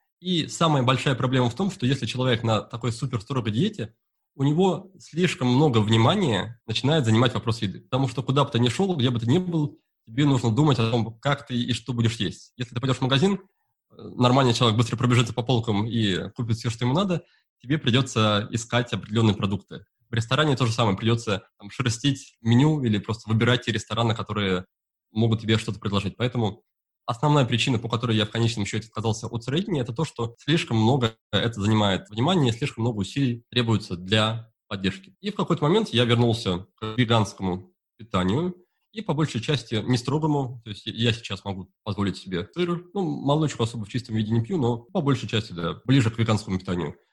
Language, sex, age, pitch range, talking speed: Russian, male, 20-39, 110-140 Hz, 195 wpm